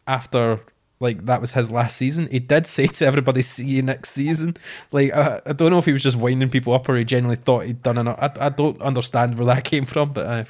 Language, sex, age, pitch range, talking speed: English, male, 20-39, 120-140 Hz, 255 wpm